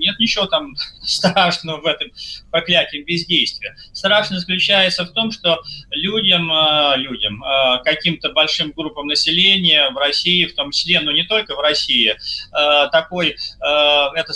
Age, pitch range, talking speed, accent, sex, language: 30-49, 150-175 Hz, 130 wpm, native, male, Russian